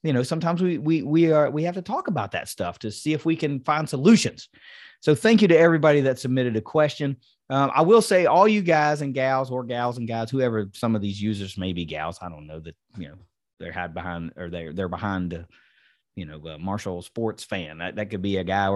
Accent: American